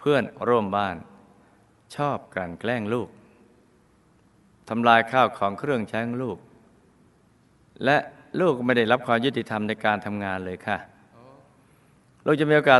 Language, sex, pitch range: Thai, male, 100-125 Hz